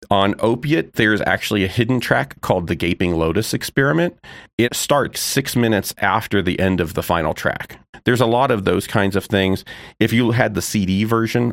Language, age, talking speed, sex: English, 40-59, 195 wpm, male